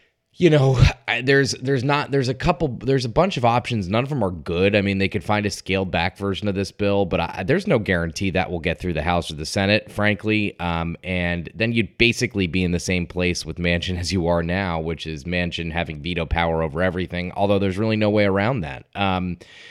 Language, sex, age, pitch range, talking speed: English, male, 20-39, 90-110 Hz, 240 wpm